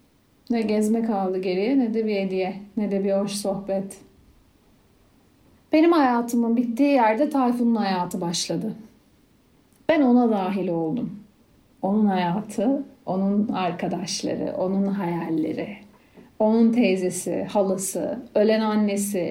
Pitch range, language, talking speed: 200-265 Hz, Turkish, 110 wpm